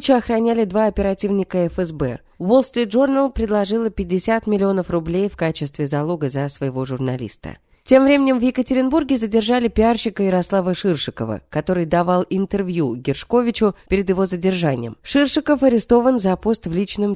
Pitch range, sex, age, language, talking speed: 170-245 Hz, female, 20-39, Russian, 125 wpm